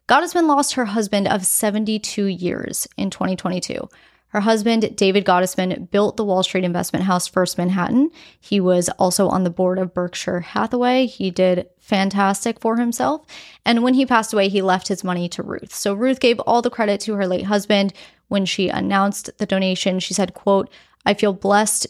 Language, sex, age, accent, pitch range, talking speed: English, female, 20-39, American, 185-230 Hz, 185 wpm